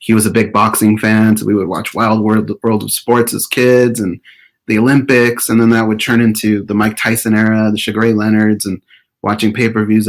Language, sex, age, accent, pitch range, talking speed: English, male, 30-49, American, 105-120 Hz, 215 wpm